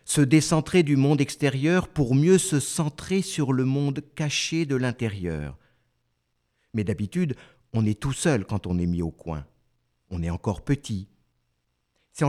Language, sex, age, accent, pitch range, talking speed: French, male, 50-69, French, 90-150 Hz, 155 wpm